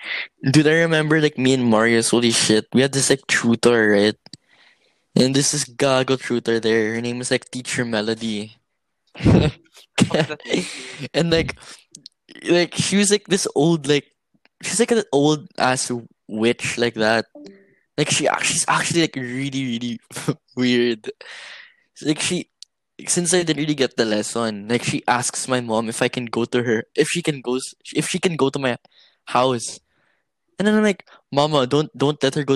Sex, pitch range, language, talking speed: male, 120-150 Hz, English, 170 wpm